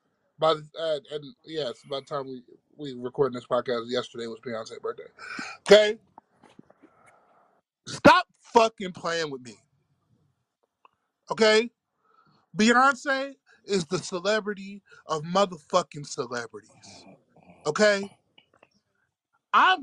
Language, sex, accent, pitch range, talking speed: English, male, American, 170-270 Hz, 100 wpm